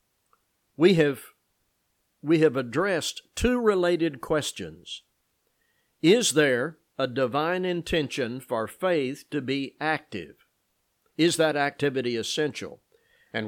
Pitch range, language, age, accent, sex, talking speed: 120-155 Hz, English, 60-79, American, male, 100 wpm